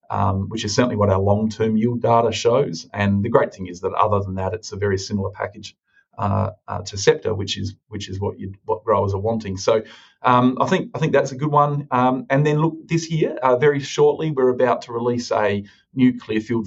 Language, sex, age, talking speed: English, male, 40-59, 235 wpm